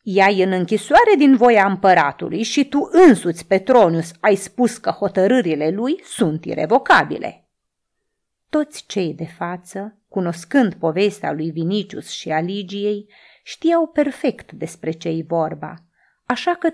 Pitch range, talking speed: 170-245 Hz, 125 wpm